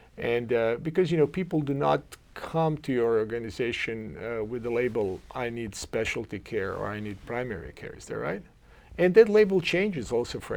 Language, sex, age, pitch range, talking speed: English, male, 50-69, 110-140 Hz, 195 wpm